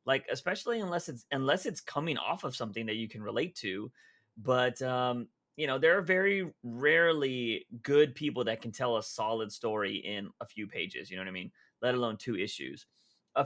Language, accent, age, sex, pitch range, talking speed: English, American, 30-49, male, 120-190 Hz, 200 wpm